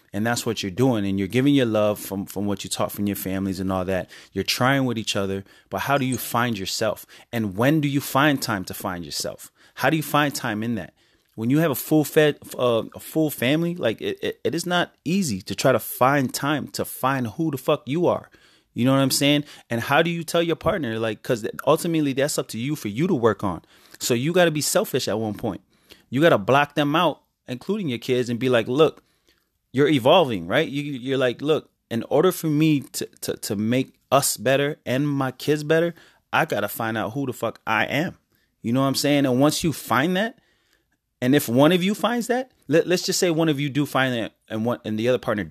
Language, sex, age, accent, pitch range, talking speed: English, male, 30-49, American, 110-155 Hz, 245 wpm